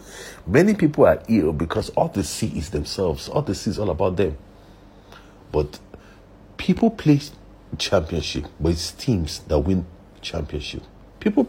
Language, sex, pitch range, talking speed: English, male, 85-110 Hz, 145 wpm